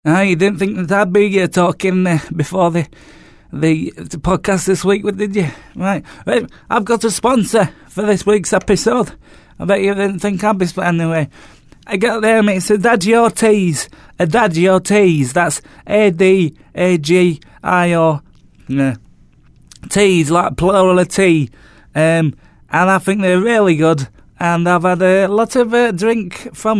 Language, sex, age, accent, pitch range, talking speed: English, male, 30-49, British, 170-205 Hz, 160 wpm